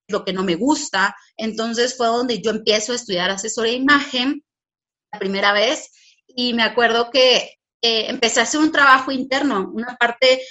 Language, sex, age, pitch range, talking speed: Spanish, female, 30-49, 205-255 Hz, 175 wpm